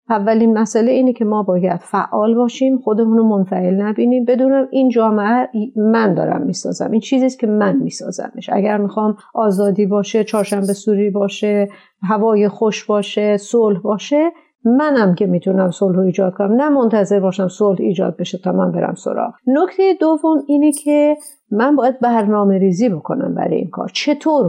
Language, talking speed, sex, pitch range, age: Persian, 150 wpm, female, 205-260 Hz, 50-69